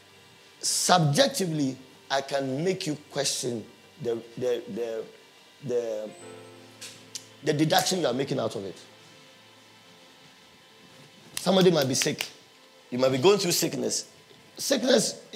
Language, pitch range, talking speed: English, 145-200 Hz, 115 wpm